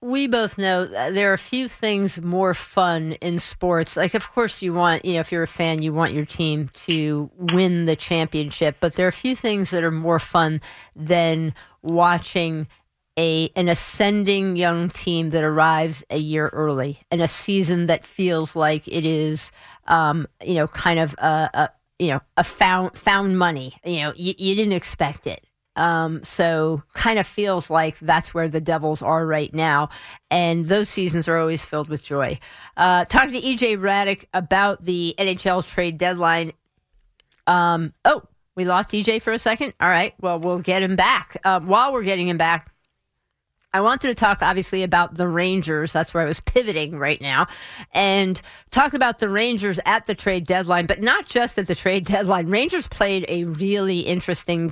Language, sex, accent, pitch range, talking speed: English, female, American, 160-195 Hz, 185 wpm